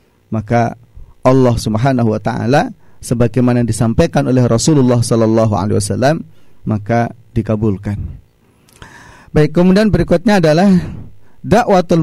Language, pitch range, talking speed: Indonesian, 110-135 Hz, 100 wpm